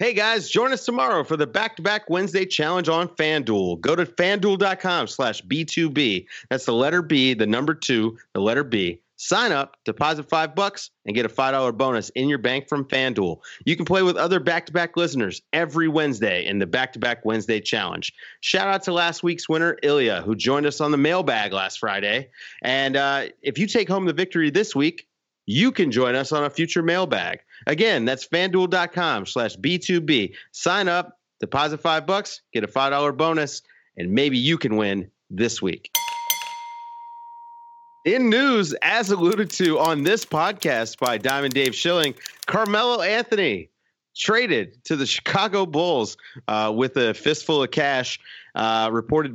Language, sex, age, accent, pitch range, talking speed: English, male, 30-49, American, 130-185 Hz, 165 wpm